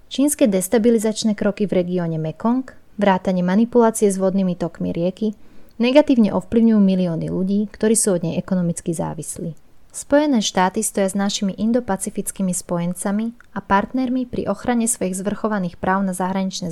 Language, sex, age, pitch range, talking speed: Slovak, female, 20-39, 180-220 Hz, 135 wpm